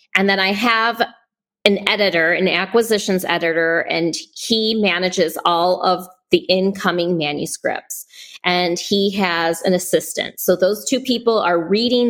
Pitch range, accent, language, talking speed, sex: 175-205 Hz, American, English, 140 wpm, female